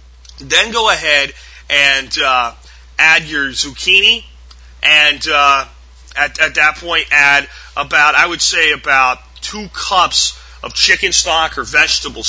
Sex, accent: male, American